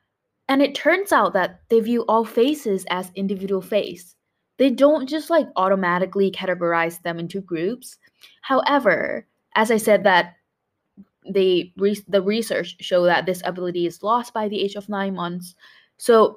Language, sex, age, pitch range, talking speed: English, female, 10-29, 185-240 Hz, 160 wpm